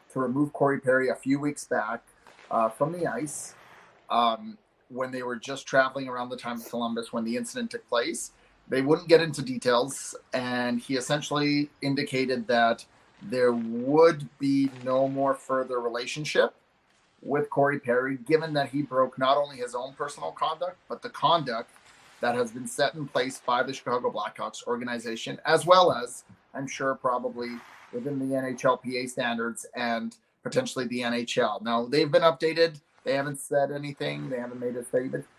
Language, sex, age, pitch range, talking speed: English, male, 30-49, 125-150 Hz, 170 wpm